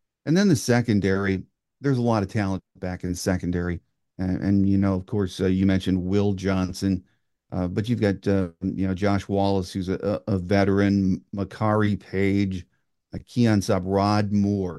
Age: 50-69